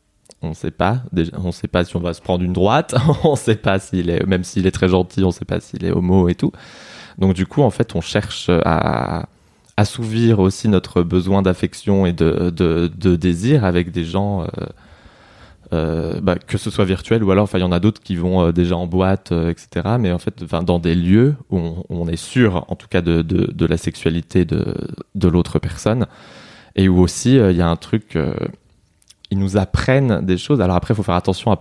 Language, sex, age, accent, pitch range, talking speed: French, male, 20-39, French, 90-100 Hz, 220 wpm